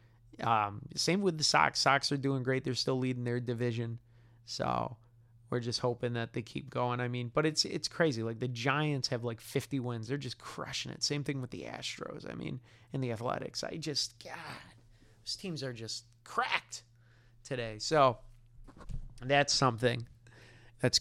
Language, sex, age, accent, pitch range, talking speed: English, male, 30-49, American, 115-135 Hz, 175 wpm